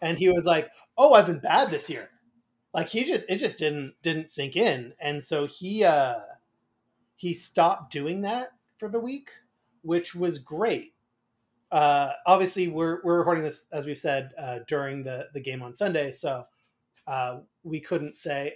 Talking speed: 175 wpm